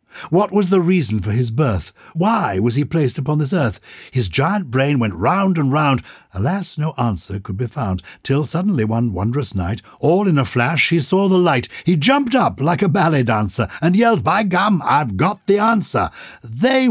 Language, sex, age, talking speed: English, male, 60-79, 200 wpm